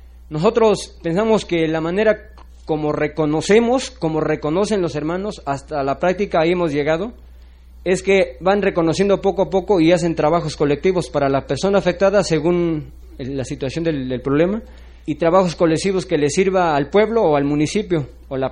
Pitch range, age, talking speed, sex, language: 150-200 Hz, 40-59, 165 wpm, male, Spanish